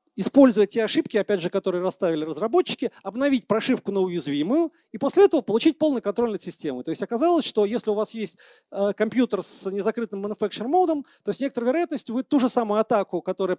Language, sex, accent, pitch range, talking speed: Russian, male, native, 185-255 Hz, 190 wpm